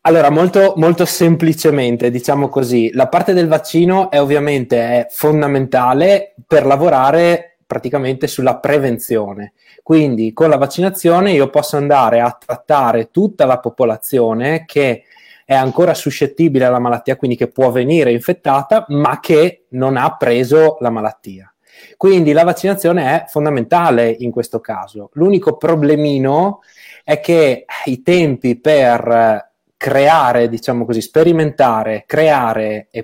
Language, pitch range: Italian, 120-155 Hz